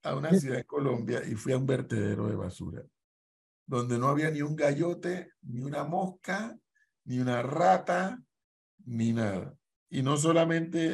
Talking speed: 160 wpm